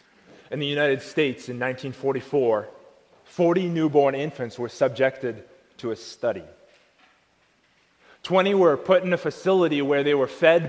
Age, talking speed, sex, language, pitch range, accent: 30-49, 135 wpm, male, English, 135-180 Hz, American